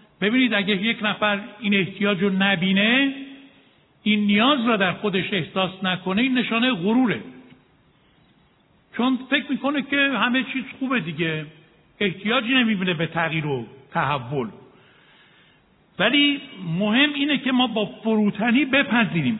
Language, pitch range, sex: Persian, 190-245 Hz, male